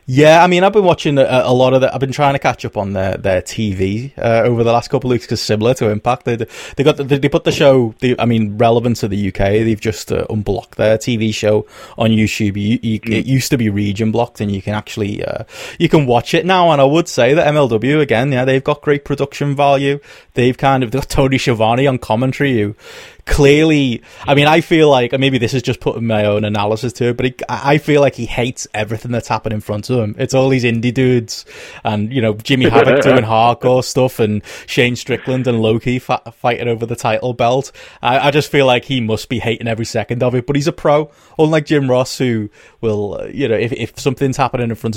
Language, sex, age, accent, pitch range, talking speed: English, male, 20-39, British, 110-135 Hz, 240 wpm